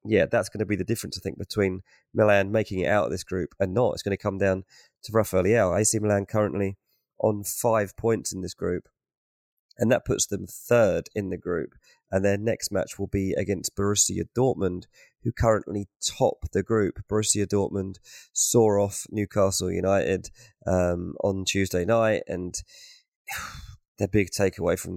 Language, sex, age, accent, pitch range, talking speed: English, male, 20-39, British, 95-105 Hz, 175 wpm